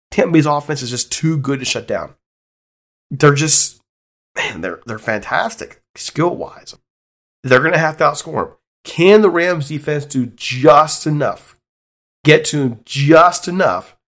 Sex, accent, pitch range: male, American, 120-155 Hz